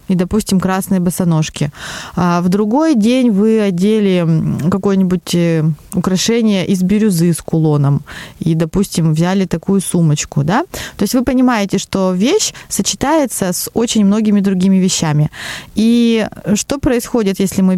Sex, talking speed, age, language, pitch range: female, 130 wpm, 20-39, Russian, 180-225 Hz